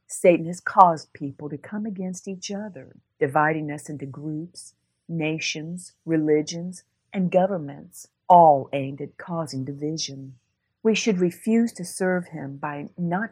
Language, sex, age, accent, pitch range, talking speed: English, female, 40-59, American, 150-185 Hz, 135 wpm